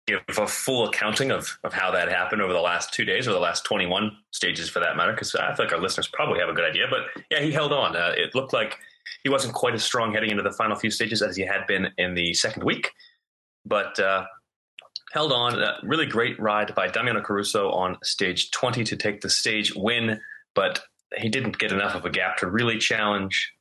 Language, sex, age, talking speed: English, male, 30-49, 230 wpm